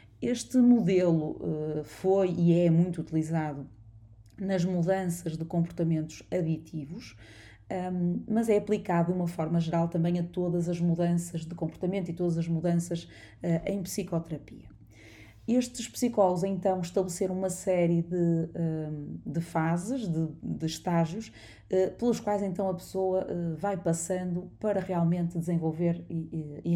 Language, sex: Portuguese, female